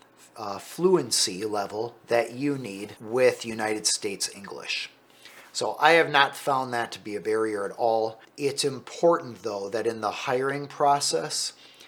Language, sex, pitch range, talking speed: English, male, 115-140 Hz, 150 wpm